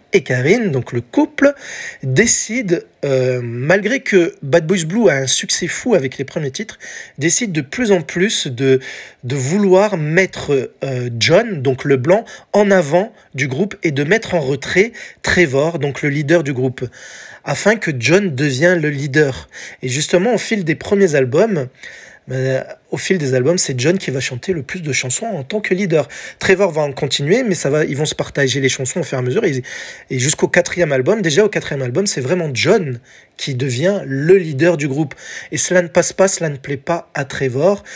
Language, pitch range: French, 135-185 Hz